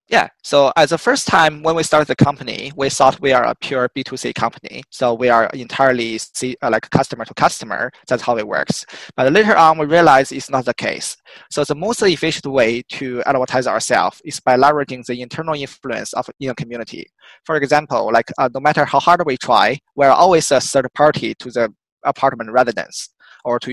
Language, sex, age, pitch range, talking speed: English, male, 20-39, 125-150 Hz, 195 wpm